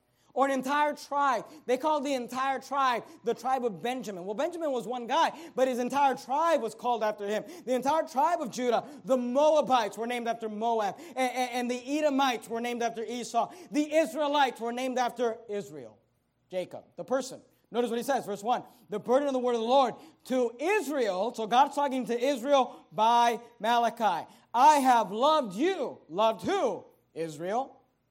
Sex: male